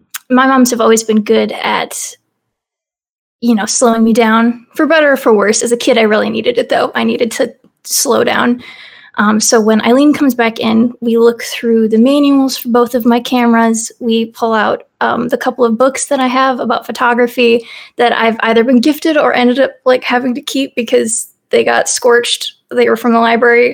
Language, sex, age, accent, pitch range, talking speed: English, female, 20-39, American, 230-260 Hz, 205 wpm